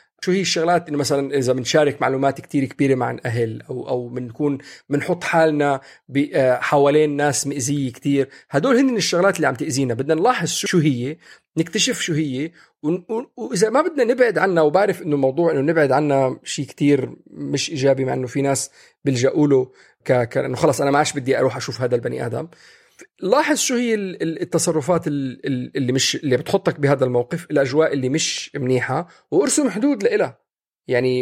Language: Arabic